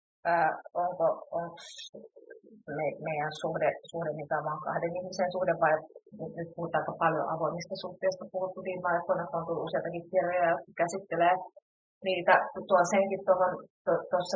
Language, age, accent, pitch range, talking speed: Finnish, 30-49, native, 165-190 Hz, 130 wpm